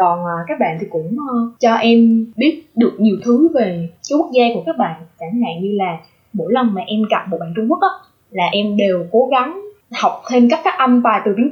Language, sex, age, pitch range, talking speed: Vietnamese, female, 10-29, 200-260 Hz, 235 wpm